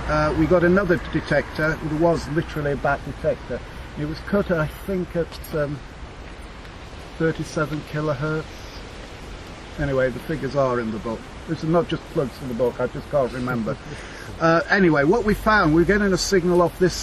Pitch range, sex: 115-165 Hz, male